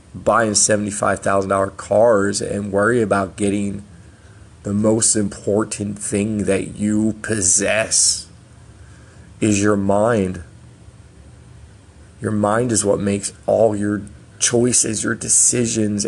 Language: English